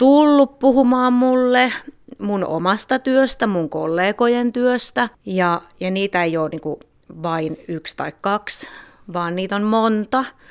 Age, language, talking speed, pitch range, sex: 30-49, Finnish, 135 wpm, 165-225 Hz, female